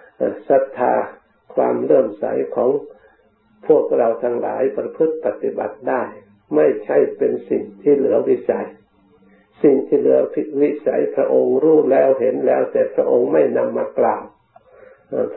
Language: Thai